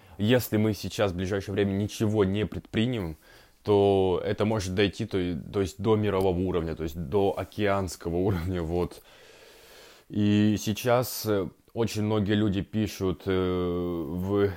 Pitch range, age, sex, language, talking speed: 95-110 Hz, 20-39, male, Russian, 120 wpm